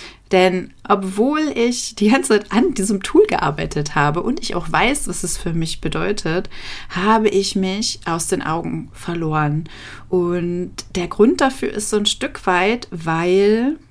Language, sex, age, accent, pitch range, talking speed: German, female, 30-49, German, 170-210 Hz, 160 wpm